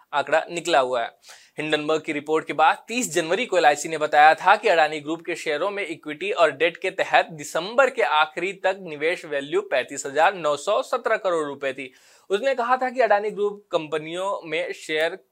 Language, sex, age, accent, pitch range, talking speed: Hindi, male, 20-39, native, 155-215 Hz, 50 wpm